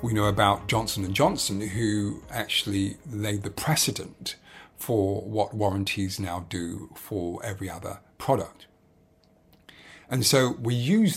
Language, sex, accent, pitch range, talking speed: English, male, British, 100-125 Hz, 130 wpm